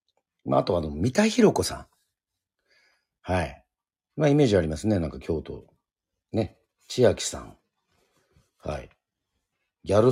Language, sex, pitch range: Japanese, male, 80-105 Hz